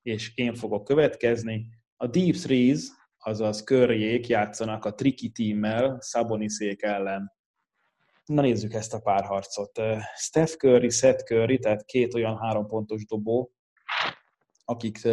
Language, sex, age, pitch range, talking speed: Hungarian, male, 20-39, 105-125 Hz, 125 wpm